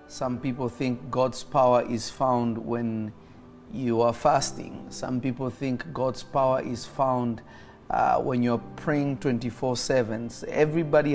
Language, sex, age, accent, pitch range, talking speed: English, male, 30-49, South African, 120-130 Hz, 130 wpm